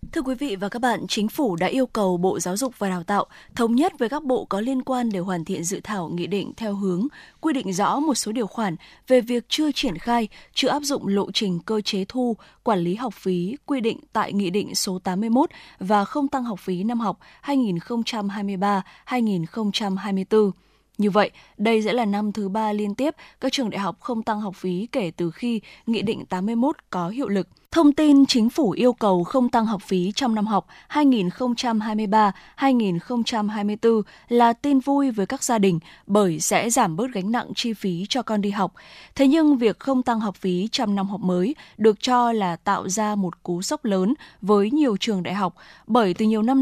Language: Vietnamese